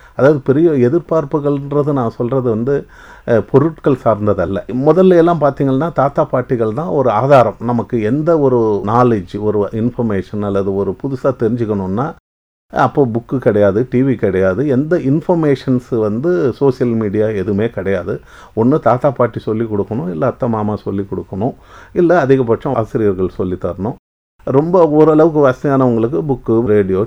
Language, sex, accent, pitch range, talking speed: English, male, Indian, 105-145 Hz, 105 wpm